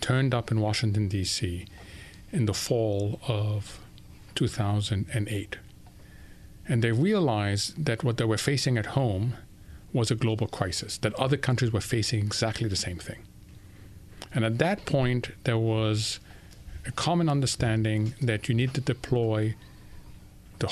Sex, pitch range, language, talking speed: male, 105-135 Hz, English, 140 wpm